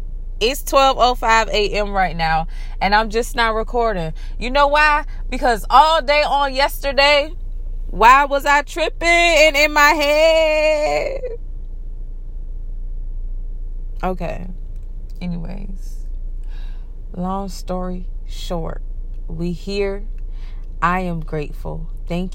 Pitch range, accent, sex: 160-235 Hz, American, female